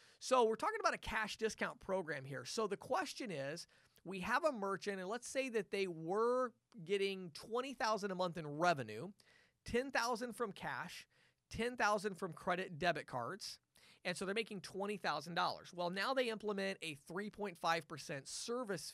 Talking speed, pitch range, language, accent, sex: 155 wpm, 165-215 Hz, English, American, male